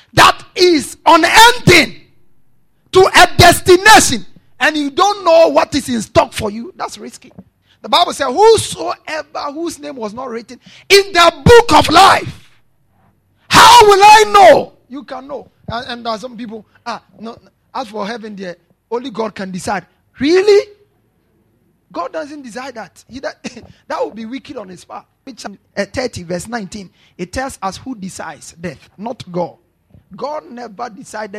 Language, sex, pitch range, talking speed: English, male, 195-315 Hz, 155 wpm